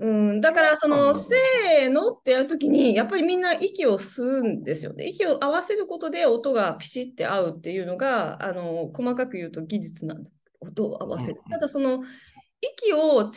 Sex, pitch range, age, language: female, 210-315 Hz, 20-39, Japanese